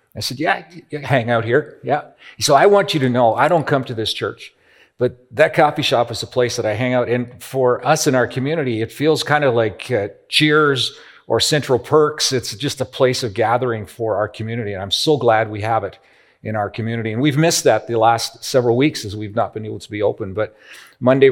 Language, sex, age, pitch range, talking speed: English, male, 40-59, 110-135 Hz, 235 wpm